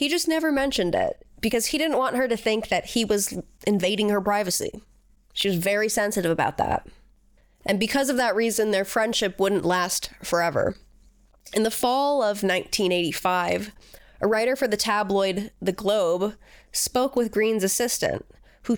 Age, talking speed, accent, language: 20-39, 165 wpm, American, English